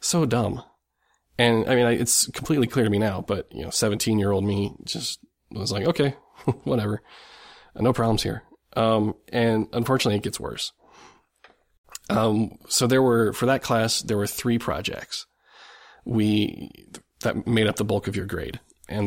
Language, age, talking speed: English, 20-39, 170 wpm